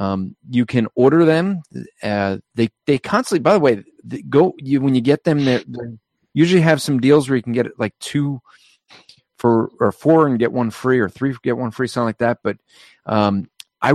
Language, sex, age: English, male, 30-49